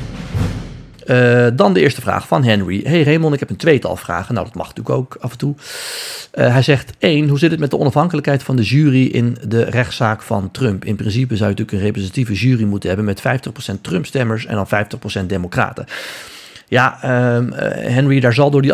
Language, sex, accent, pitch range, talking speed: Dutch, male, Dutch, 100-120 Hz, 210 wpm